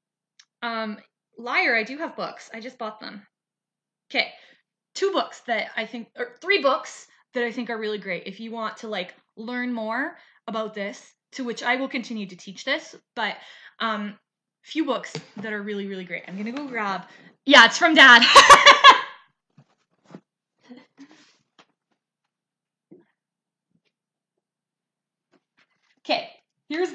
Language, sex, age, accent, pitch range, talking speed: English, female, 20-39, American, 205-280 Hz, 140 wpm